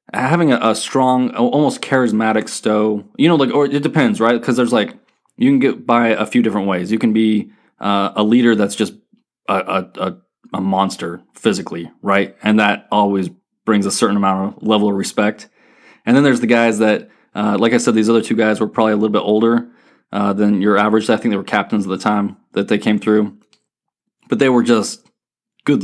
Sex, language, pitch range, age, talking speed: male, English, 105-120 Hz, 20-39, 210 wpm